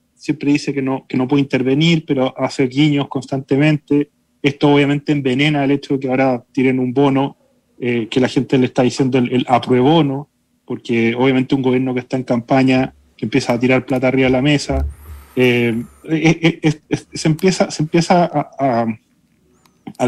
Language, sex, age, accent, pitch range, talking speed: Spanish, male, 30-49, Argentinian, 130-145 Hz, 190 wpm